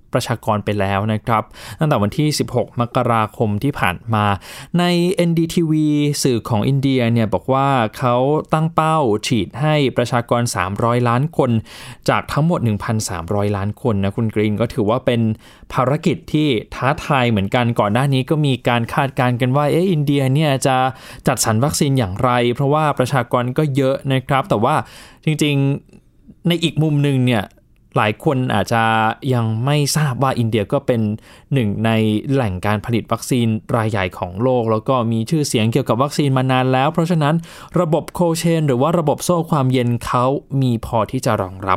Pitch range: 110-145 Hz